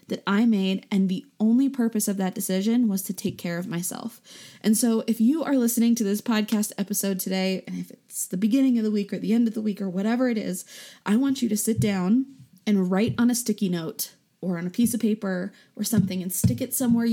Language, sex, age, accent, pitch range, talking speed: English, female, 20-39, American, 195-235 Hz, 240 wpm